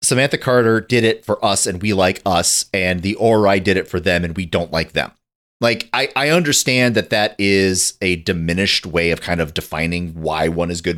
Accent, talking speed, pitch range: American, 220 wpm, 95-135 Hz